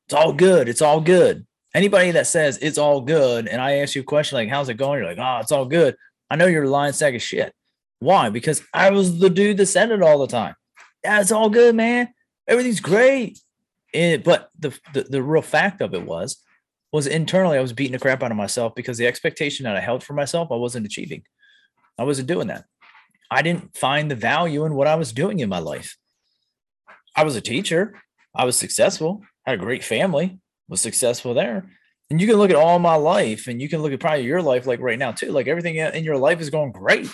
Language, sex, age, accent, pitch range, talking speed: English, male, 30-49, American, 140-190 Hz, 230 wpm